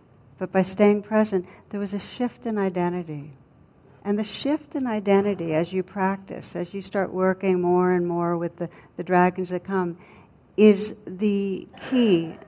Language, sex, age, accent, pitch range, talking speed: English, female, 60-79, American, 170-200 Hz, 165 wpm